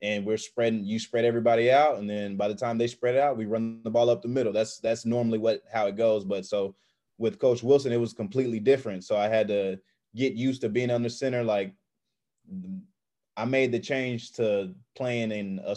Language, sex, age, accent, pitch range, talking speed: English, male, 20-39, American, 105-120 Hz, 220 wpm